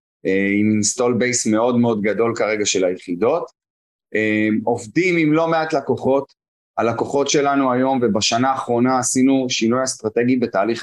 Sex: male